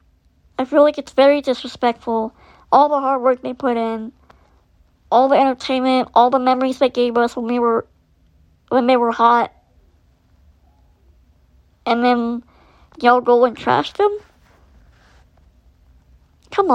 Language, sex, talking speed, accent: English, male, 135 wpm, American